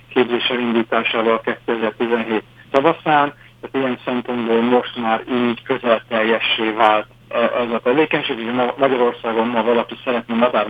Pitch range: 115-130 Hz